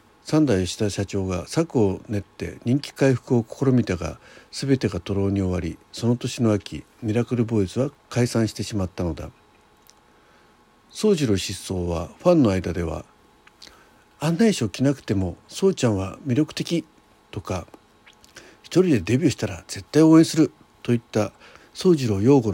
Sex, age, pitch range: male, 60-79, 95-145 Hz